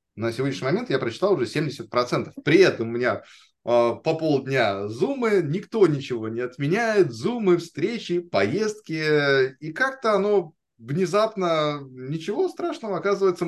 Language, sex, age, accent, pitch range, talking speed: Russian, male, 20-39, native, 115-170 Hz, 130 wpm